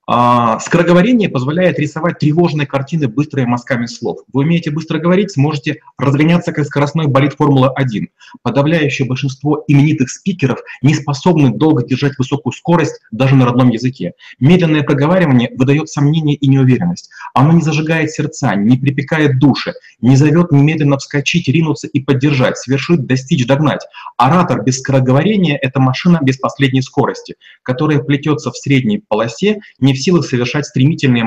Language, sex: Russian, male